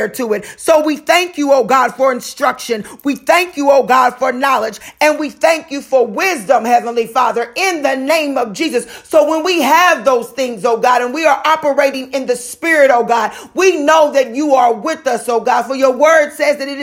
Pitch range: 265-335 Hz